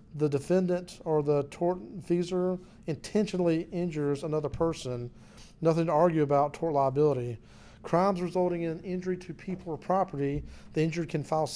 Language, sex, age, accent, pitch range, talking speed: English, male, 40-59, American, 145-170 Hz, 140 wpm